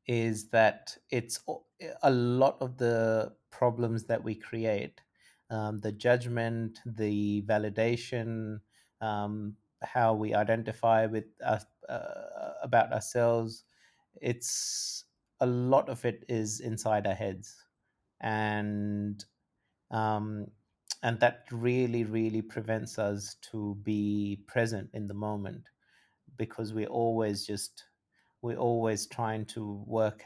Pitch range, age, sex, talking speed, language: 105-115 Hz, 30-49, male, 115 wpm, English